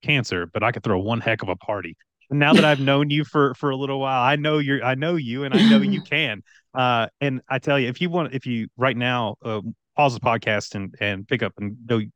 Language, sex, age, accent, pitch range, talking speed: English, male, 30-49, American, 105-130 Hz, 265 wpm